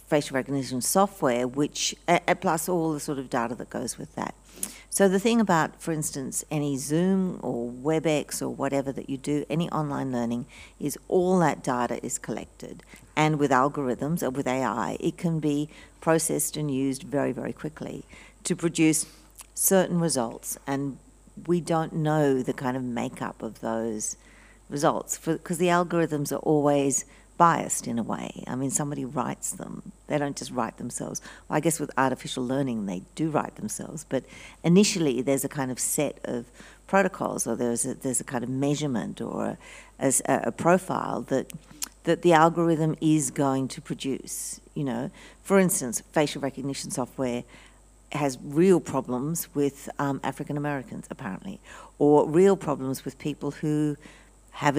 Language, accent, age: English, Australian, 50-69